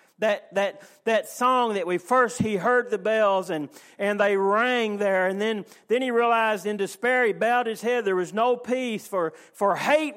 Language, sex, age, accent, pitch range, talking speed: English, male, 50-69, American, 195-240 Hz, 200 wpm